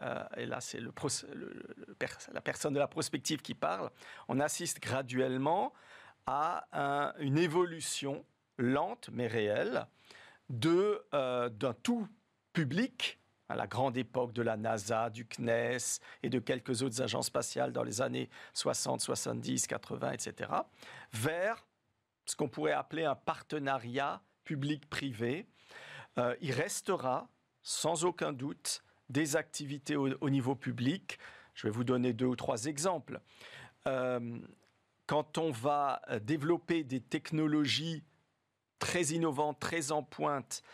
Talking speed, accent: 135 wpm, French